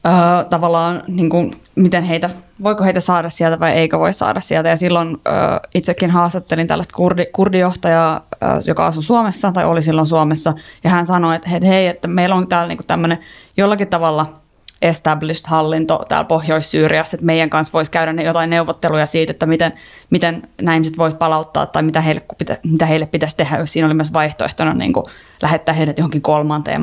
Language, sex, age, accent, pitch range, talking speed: Finnish, female, 20-39, native, 160-185 Hz, 180 wpm